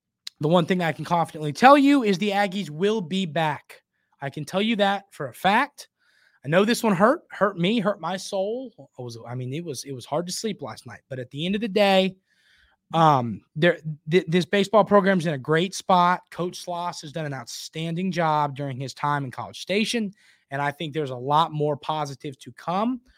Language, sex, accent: English, male, American